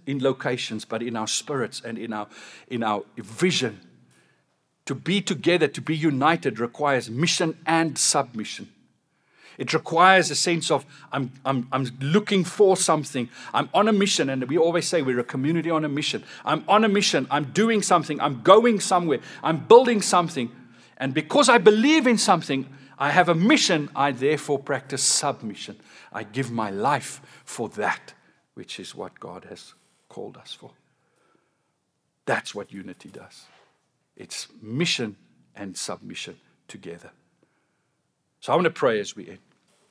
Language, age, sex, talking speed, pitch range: English, 50-69, male, 160 wpm, 130-175 Hz